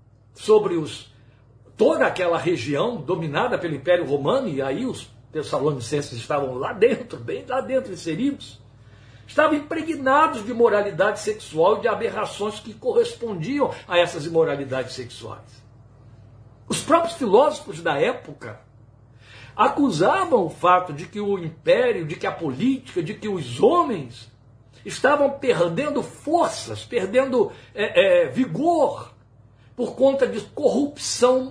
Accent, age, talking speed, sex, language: Brazilian, 60-79, 125 wpm, male, Portuguese